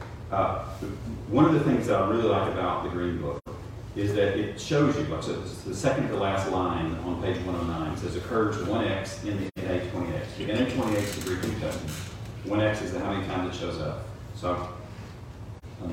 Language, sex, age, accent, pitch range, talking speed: English, male, 40-59, American, 90-110 Hz, 220 wpm